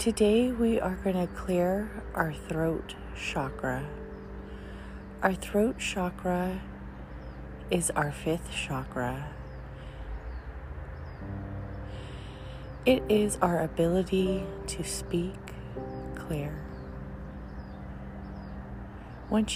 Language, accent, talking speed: English, American, 70 wpm